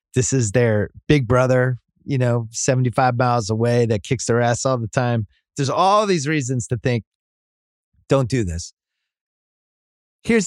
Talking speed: 155 wpm